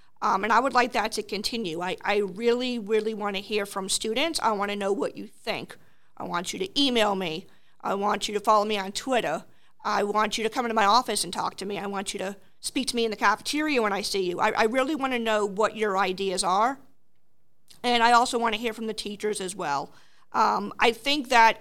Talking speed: 245 wpm